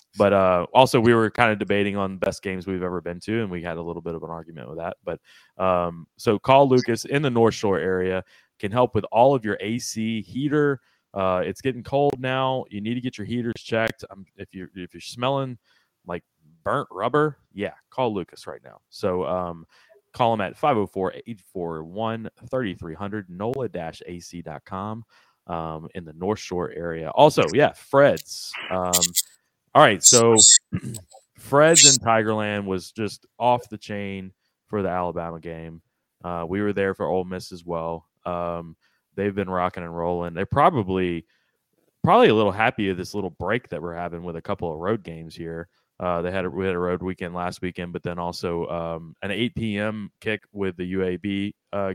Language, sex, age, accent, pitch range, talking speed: English, male, 20-39, American, 85-110 Hz, 180 wpm